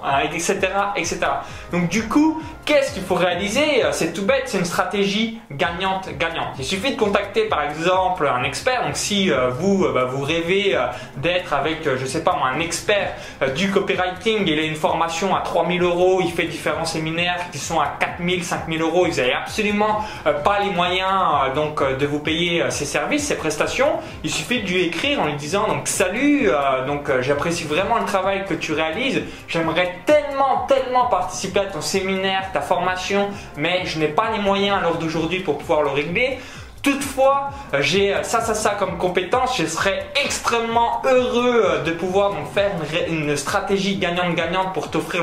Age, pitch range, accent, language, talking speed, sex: 20-39, 160-200 Hz, French, French, 190 wpm, male